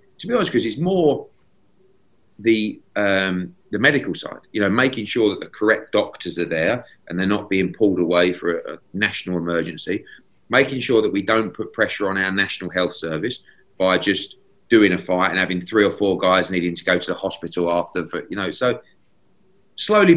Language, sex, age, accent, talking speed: English, male, 30-49, British, 195 wpm